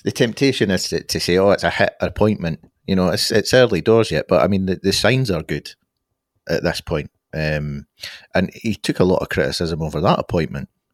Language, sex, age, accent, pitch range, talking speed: English, male, 30-49, British, 80-95 Hz, 220 wpm